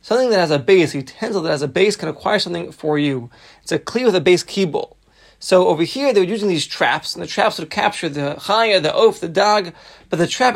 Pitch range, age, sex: 165-215 Hz, 30-49, male